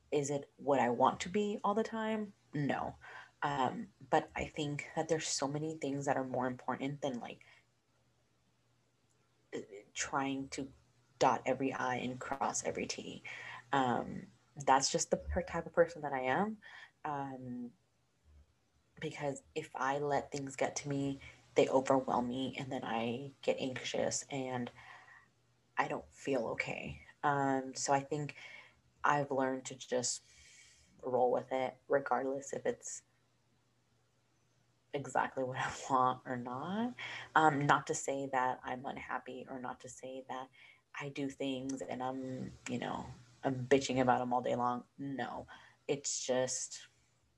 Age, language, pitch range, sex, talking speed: 20-39, English, 125-140 Hz, female, 145 wpm